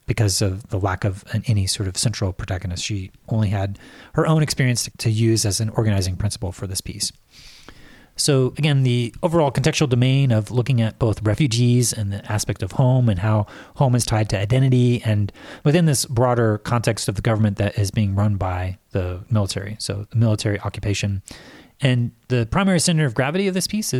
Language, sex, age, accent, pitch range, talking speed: English, male, 30-49, American, 100-125 Hz, 190 wpm